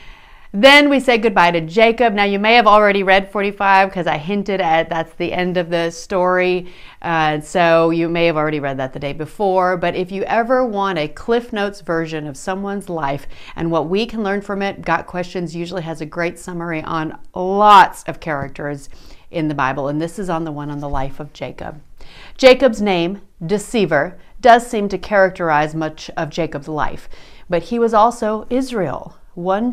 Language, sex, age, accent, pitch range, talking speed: English, female, 40-59, American, 160-205 Hz, 190 wpm